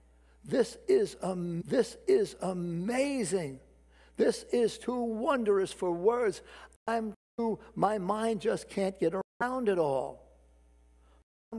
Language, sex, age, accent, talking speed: English, male, 60-79, American, 120 wpm